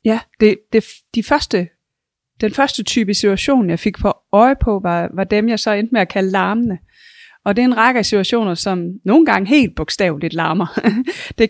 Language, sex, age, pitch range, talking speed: Danish, female, 30-49, 185-240 Hz, 200 wpm